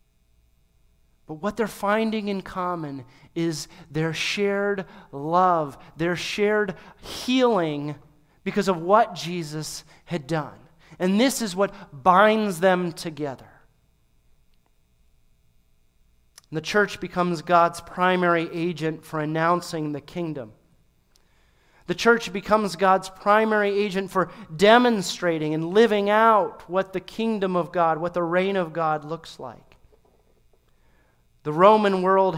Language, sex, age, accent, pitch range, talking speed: English, male, 40-59, American, 160-190 Hz, 115 wpm